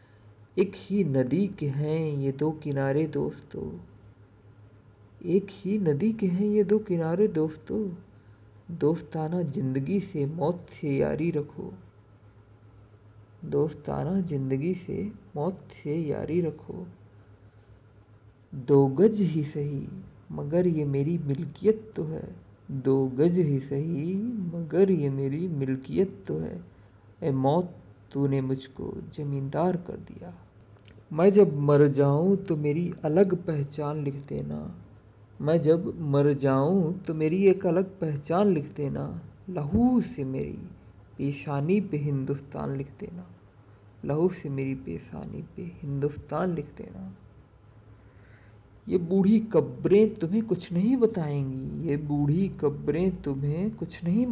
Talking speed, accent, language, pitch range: 120 wpm, native, Hindi, 110-175 Hz